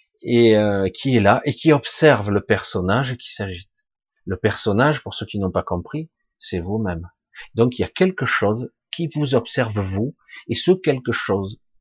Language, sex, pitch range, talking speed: French, male, 95-150 Hz, 185 wpm